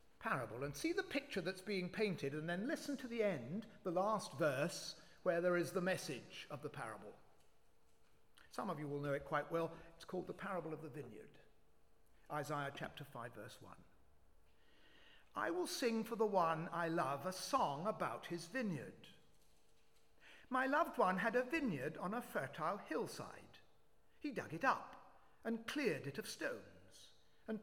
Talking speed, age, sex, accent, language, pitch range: 170 wpm, 50-69, male, British, English, 150-230 Hz